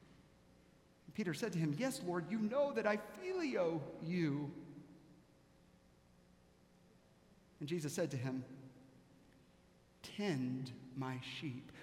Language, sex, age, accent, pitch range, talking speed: English, male, 50-69, American, 130-195 Hz, 100 wpm